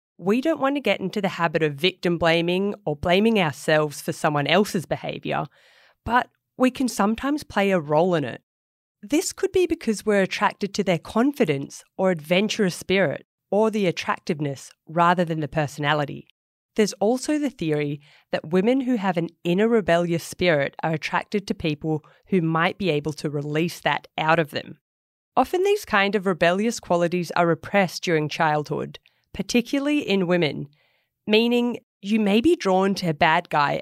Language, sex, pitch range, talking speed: English, female, 155-210 Hz, 165 wpm